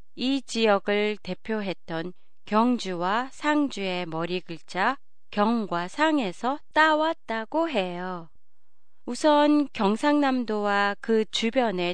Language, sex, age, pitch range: Japanese, female, 30-49, 185-265 Hz